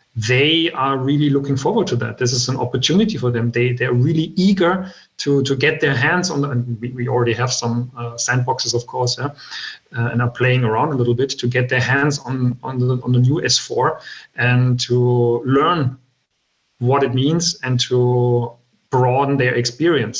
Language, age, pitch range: English, 40-59, 125-140 Hz